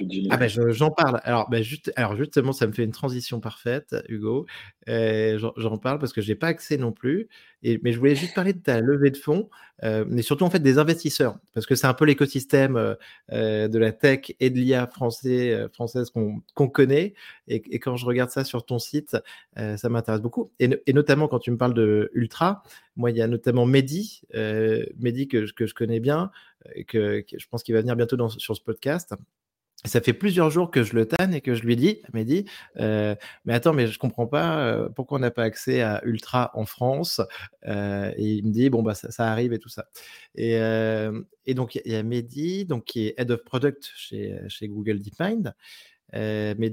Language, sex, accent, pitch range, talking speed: French, male, French, 110-140 Hz, 225 wpm